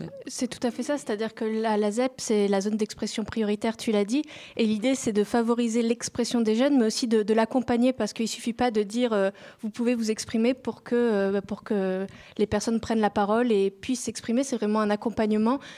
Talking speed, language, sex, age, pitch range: 230 wpm, French, female, 20-39, 210-240 Hz